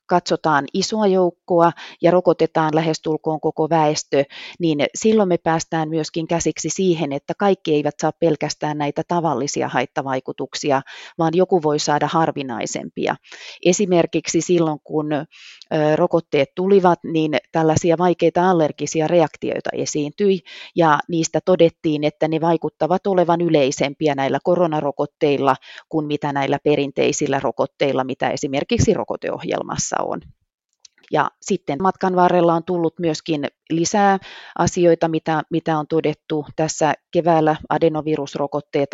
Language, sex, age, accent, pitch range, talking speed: Finnish, female, 30-49, native, 150-170 Hz, 115 wpm